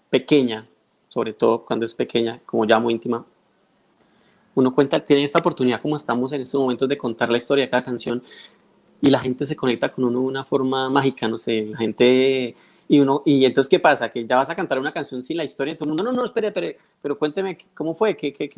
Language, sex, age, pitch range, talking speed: Spanish, male, 30-49, 125-145 Hz, 240 wpm